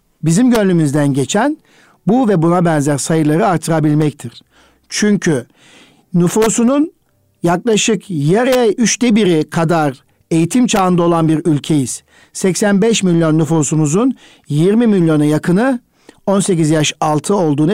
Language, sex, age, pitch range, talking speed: Turkish, male, 60-79, 155-195 Hz, 105 wpm